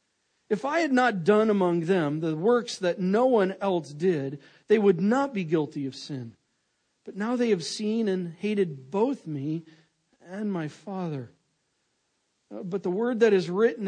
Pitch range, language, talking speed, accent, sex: 165-230 Hz, English, 170 wpm, American, male